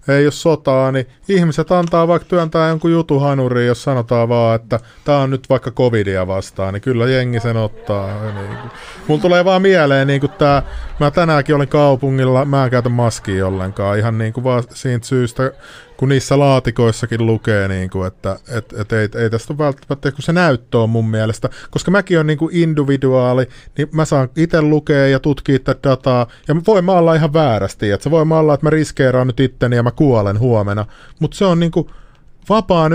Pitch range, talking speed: 115-155 Hz, 190 wpm